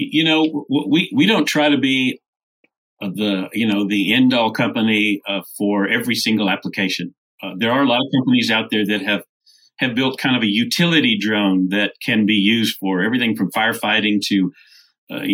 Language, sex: English, male